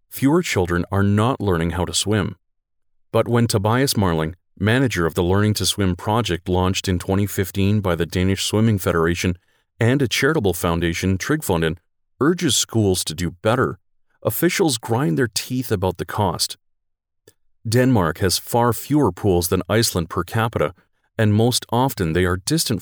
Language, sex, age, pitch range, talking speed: English, male, 40-59, 90-115 Hz, 155 wpm